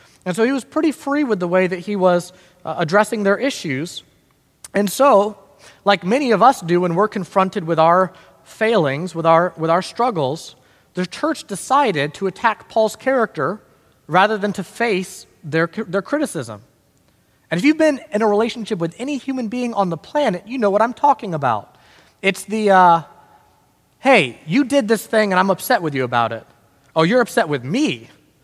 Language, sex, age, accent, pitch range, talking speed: English, male, 30-49, American, 170-245 Hz, 185 wpm